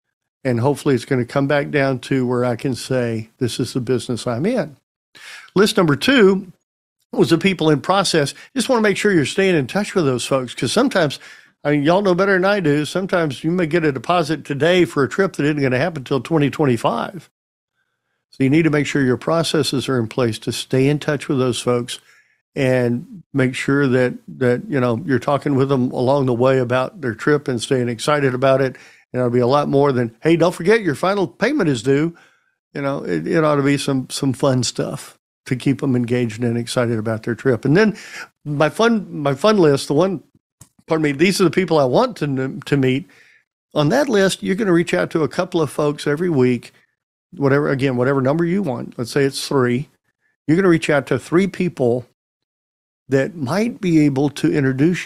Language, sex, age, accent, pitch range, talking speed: English, male, 50-69, American, 130-170 Hz, 215 wpm